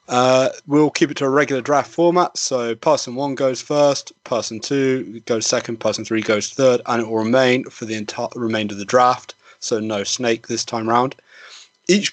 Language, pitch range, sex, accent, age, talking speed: English, 110-145 Hz, male, British, 30-49, 200 wpm